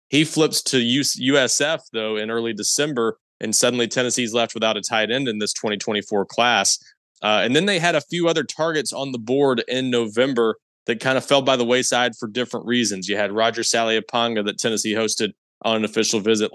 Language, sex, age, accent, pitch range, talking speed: English, male, 20-39, American, 110-120 Hz, 200 wpm